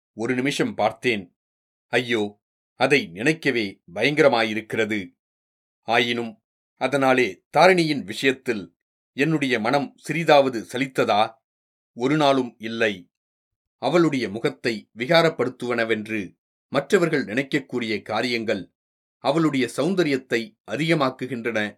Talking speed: 70 wpm